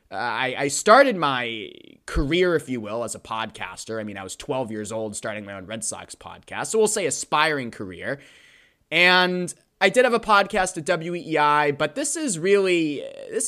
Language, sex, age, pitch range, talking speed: English, male, 20-39, 115-175 Hz, 185 wpm